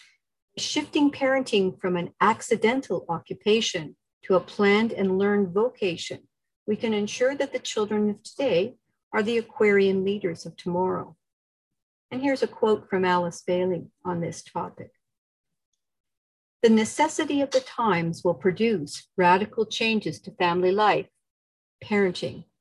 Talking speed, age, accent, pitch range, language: 130 wpm, 50-69, American, 180-230 Hz, English